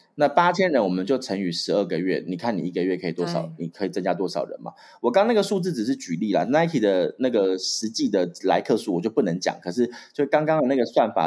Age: 20-39